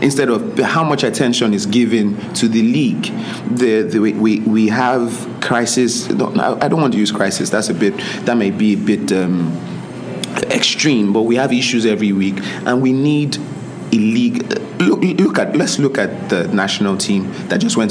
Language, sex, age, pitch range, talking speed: English, male, 30-49, 105-140 Hz, 185 wpm